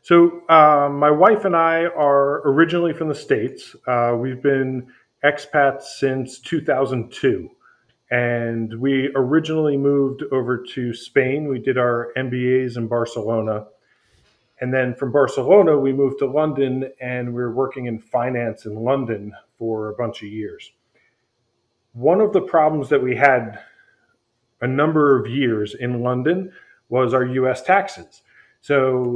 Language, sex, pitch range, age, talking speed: English, male, 125-150 Hz, 40-59, 140 wpm